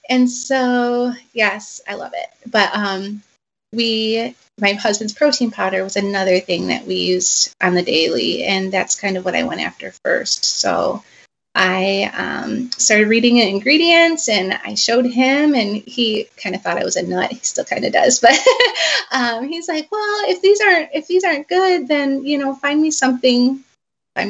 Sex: female